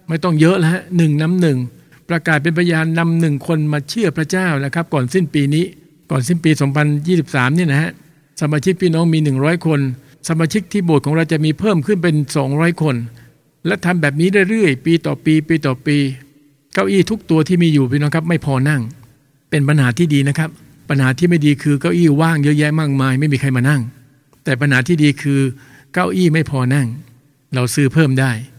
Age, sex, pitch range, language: 60-79, male, 140-170 Hz, English